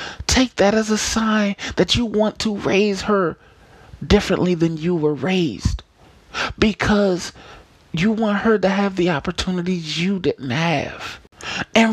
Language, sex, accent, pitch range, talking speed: English, male, American, 130-180 Hz, 140 wpm